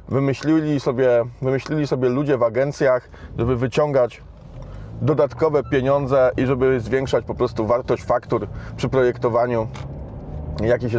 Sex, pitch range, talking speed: male, 110-140 Hz, 110 wpm